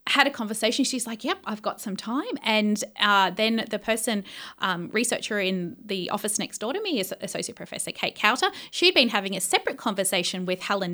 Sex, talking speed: female, 205 wpm